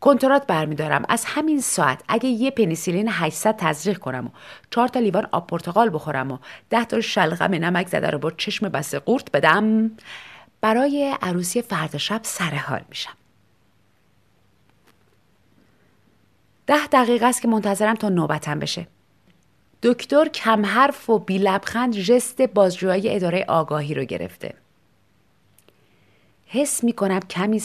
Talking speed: 125 wpm